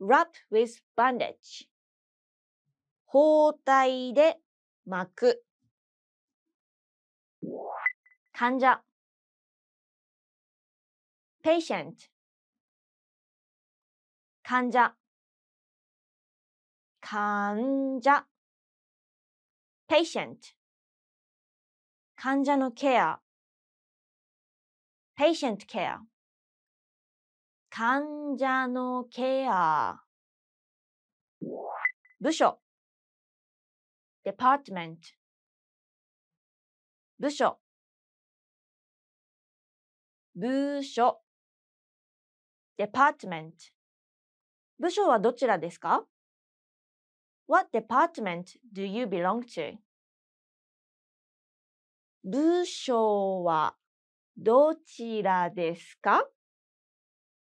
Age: 20-39